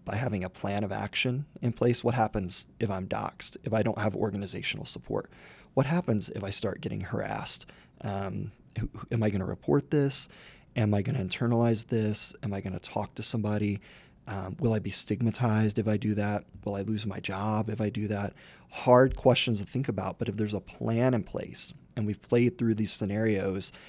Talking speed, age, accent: 205 wpm, 30-49, American